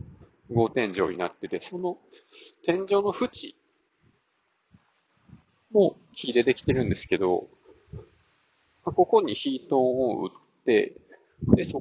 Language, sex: Japanese, male